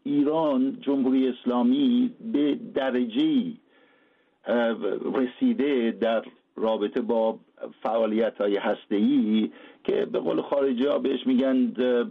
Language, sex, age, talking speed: Persian, male, 60-79, 90 wpm